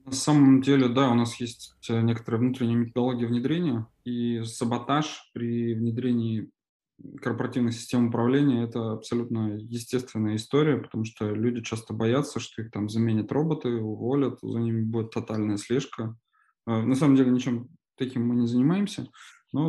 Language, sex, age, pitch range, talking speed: Russian, male, 20-39, 115-135 Hz, 145 wpm